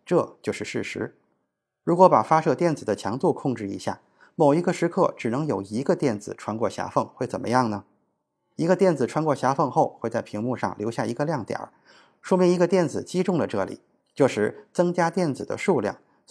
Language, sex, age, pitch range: Chinese, male, 20-39, 120-175 Hz